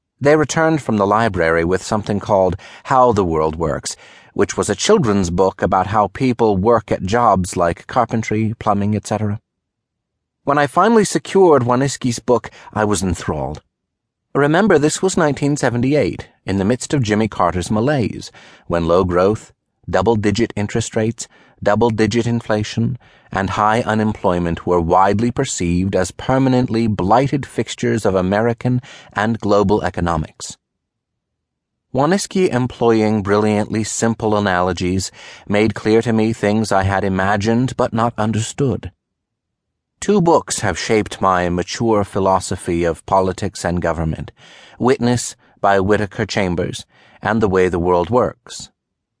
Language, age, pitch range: English, 30-49, 95-120 Hz